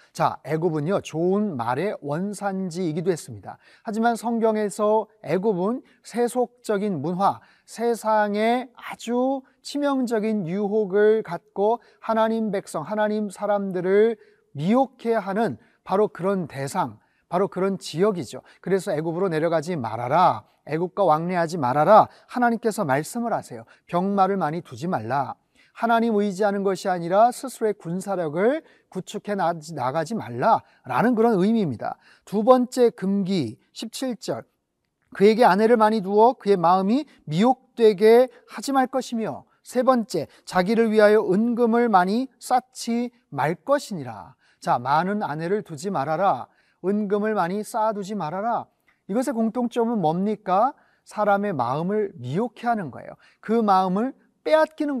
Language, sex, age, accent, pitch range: Korean, male, 30-49, native, 180-230 Hz